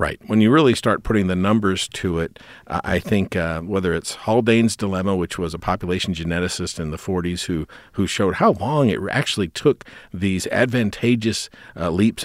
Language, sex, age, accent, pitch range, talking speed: English, male, 50-69, American, 85-115 Hz, 185 wpm